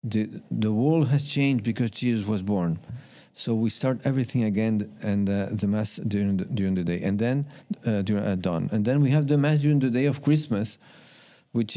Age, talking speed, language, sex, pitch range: 50-69, 210 wpm, English, male, 110-155 Hz